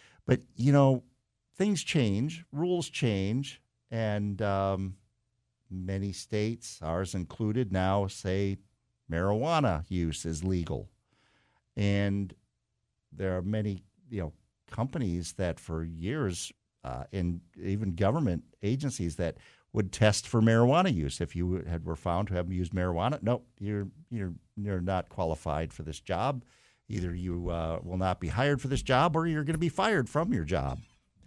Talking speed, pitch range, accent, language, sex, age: 150 wpm, 95-130 Hz, American, English, male, 50-69